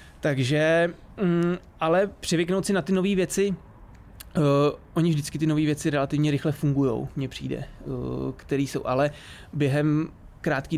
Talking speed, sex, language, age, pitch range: 140 wpm, male, Czech, 20-39, 135-150 Hz